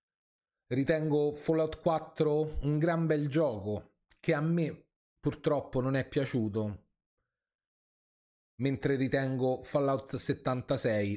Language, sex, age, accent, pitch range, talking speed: Italian, male, 30-49, native, 110-155 Hz, 95 wpm